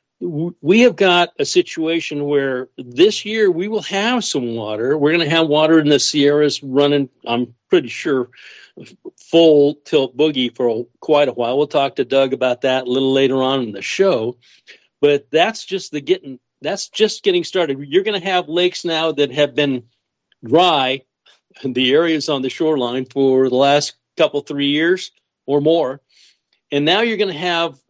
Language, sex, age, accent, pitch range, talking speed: English, male, 60-79, American, 130-165 Hz, 185 wpm